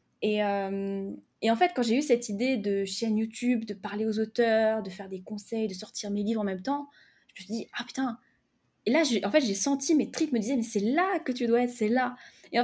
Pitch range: 190-245 Hz